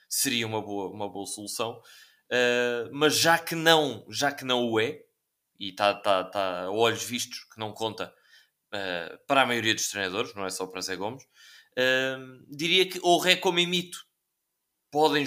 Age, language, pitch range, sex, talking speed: 20-39, Portuguese, 110-150 Hz, male, 180 wpm